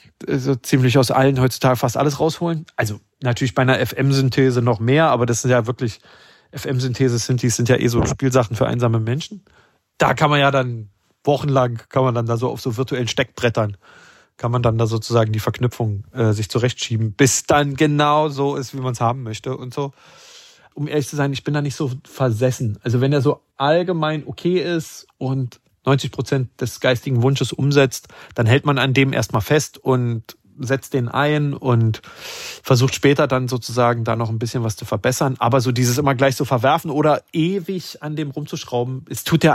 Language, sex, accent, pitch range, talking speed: German, male, German, 120-145 Hz, 195 wpm